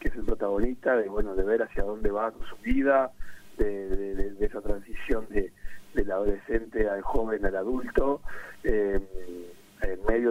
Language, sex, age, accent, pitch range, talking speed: Spanish, male, 40-59, Argentinian, 100-115 Hz, 175 wpm